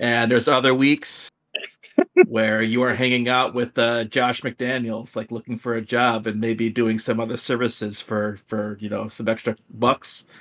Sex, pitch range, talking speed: male, 110-130 Hz, 180 wpm